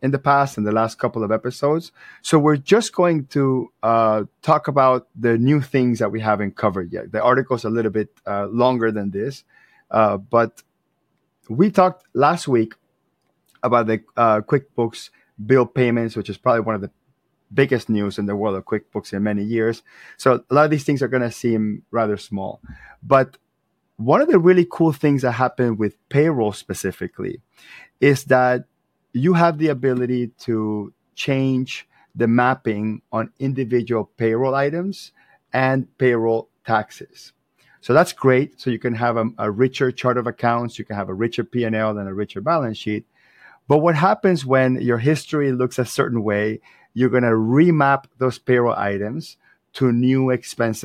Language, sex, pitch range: English, male, 110-135 Hz